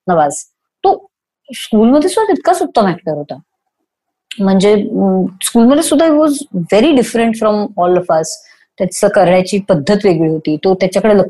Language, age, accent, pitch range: English, 30-49, Indian, 185-275 Hz